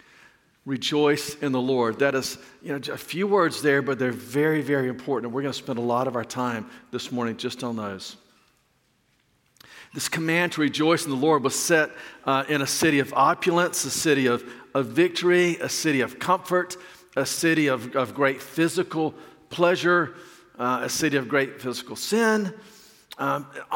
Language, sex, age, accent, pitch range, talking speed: English, male, 50-69, American, 135-165 Hz, 180 wpm